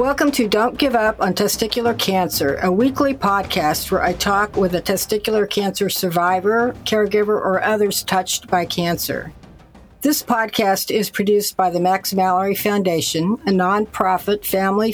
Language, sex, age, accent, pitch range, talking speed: English, female, 60-79, American, 180-210 Hz, 150 wpm